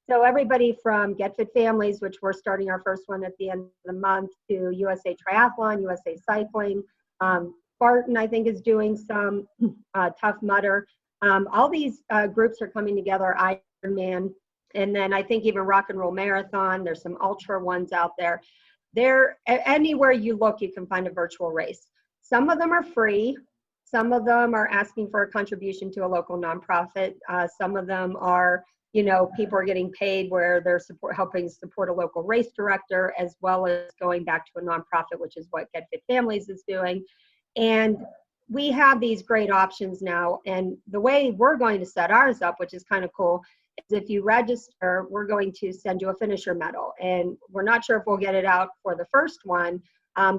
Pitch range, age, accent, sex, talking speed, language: 185-220 Hz, 40-59, American, female, 200 wpm, English